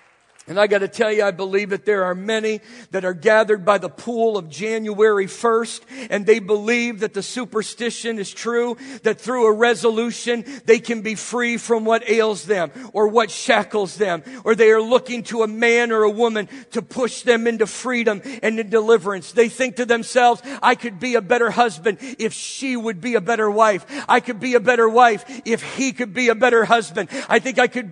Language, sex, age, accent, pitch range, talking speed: English, male, 50-69, American, 230-280 Hz, 210 wpm